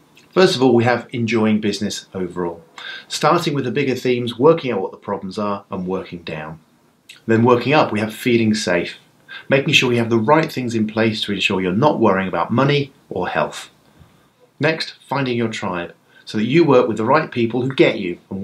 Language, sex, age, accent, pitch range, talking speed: English, male, 30-49, British, 100-130 Hz, 205 wpm